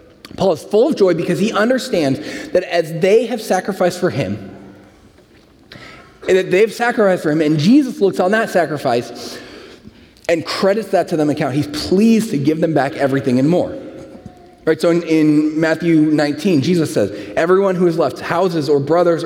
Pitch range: 155-220 Hz